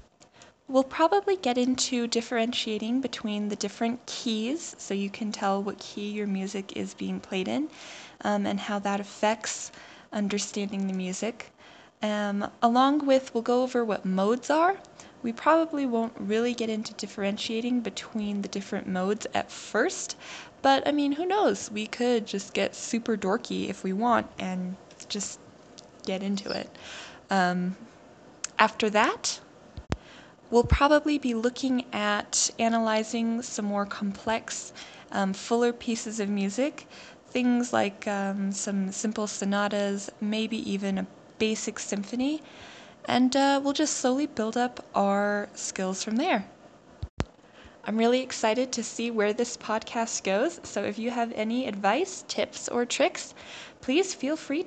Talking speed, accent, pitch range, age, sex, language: 145 wpm, American, 205-250 Hz, 10-29, female, English